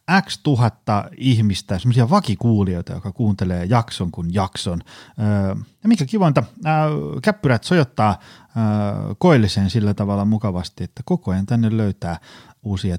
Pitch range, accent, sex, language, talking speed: 95-125 Hz, native, male, Finnish, 115 wpm